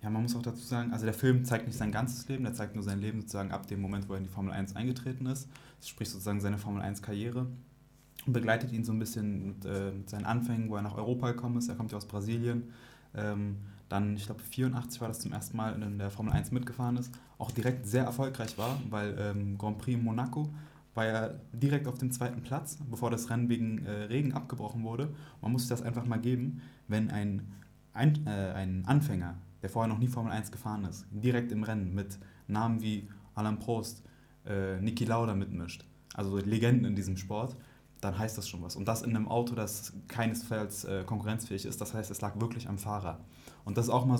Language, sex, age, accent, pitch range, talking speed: German, male, 20-39, German, 100-120 Hz, 225 wpm